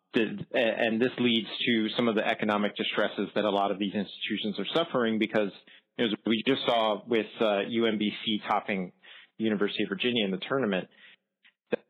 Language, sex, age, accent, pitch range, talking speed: English, male, 30-49, American, 100-115 Hz, 170 wpm